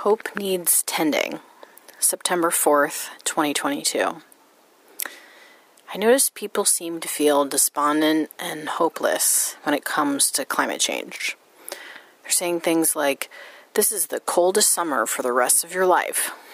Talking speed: 130 wpm